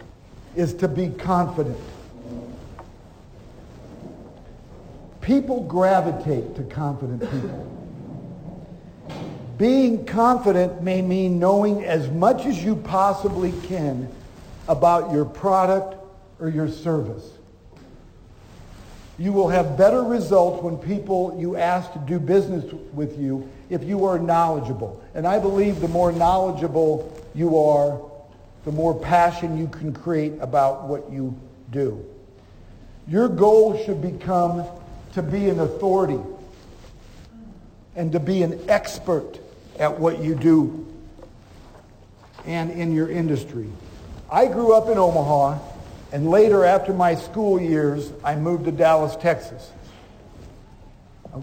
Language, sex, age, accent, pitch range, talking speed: English, male, 60-79, American, 135-185 Hz, 115 wpm